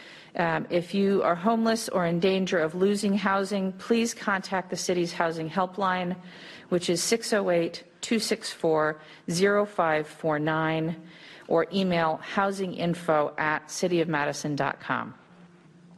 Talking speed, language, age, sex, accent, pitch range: 95 wpm, English, 40-59, female, American, 160-195 Hz